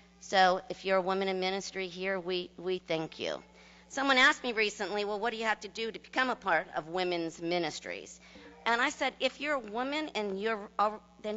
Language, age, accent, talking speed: English, 50-69, American, 200 wpm